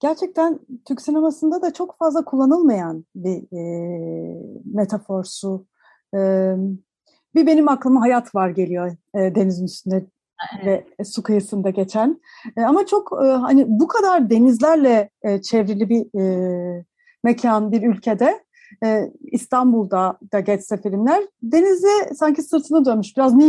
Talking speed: 130 wpm